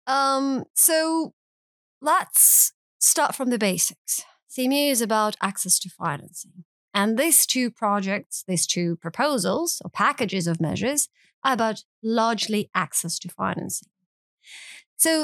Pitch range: 195-270 Hz